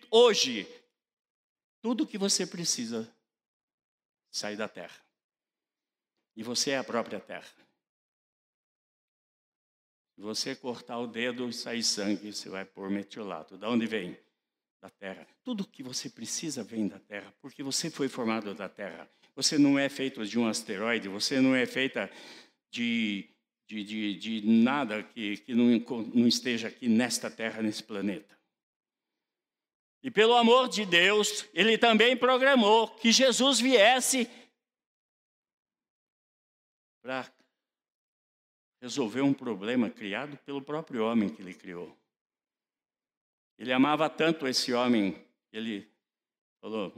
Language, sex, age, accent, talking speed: Portuguese, male, 60-79, Brazilian, 125 wpm